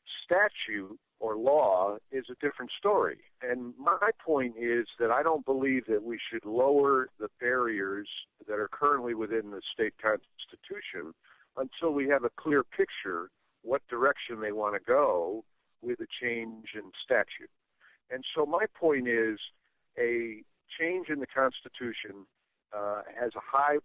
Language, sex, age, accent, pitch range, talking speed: English, male, 50-69, American, 110-185 Hz, 150 wpm